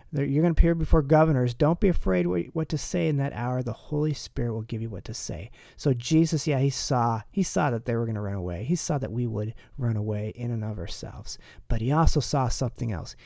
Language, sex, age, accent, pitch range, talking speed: English, male, 40-59, American, 125-165 Hz, 250 wpm